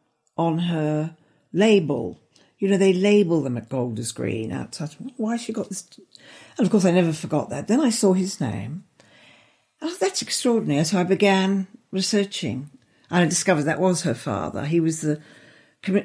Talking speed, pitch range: 180 wpm, 150-200 Hz